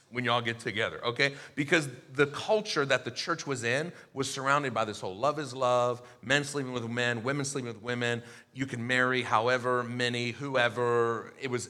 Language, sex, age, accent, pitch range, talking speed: English, male, 40-59, American, 125-165 Hz, 190 wpm